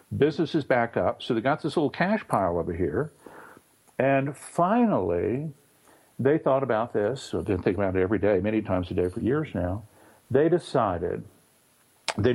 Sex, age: male, 60-79